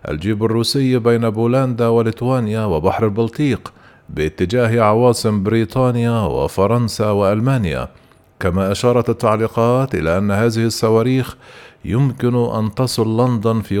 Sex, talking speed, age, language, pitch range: male, 105 wpm, 50-69, Arabic, 105-125 Hz